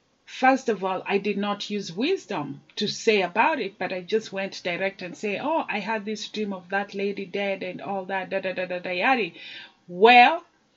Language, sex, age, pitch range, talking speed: Italian, female, 30-49, 200-235 Hz, 210 wpm